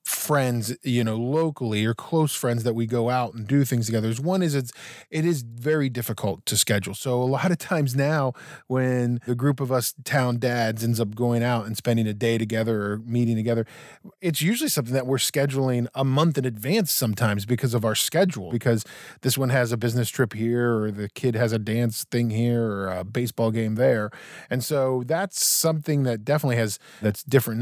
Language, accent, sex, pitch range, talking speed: English, American, male, 115-155 Hz, 205 wpm